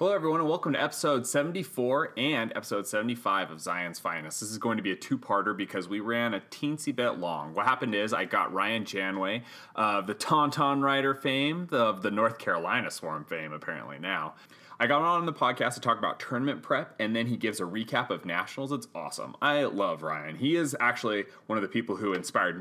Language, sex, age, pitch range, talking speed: English, male, 30-49, 105-140 Hz, 210 wpm